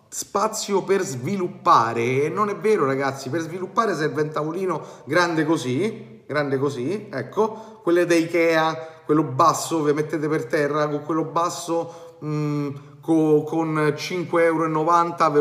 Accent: native